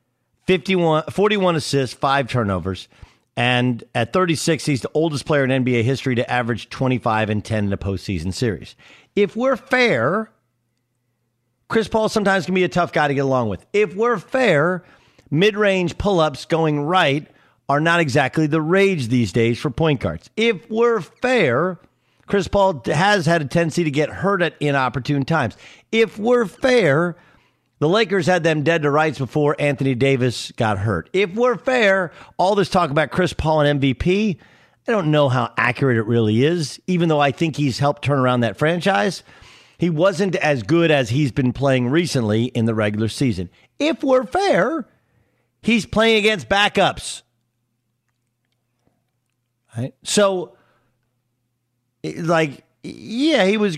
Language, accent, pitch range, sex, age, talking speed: English, American, 125-190 Hz, male, 50-69, 155 wpm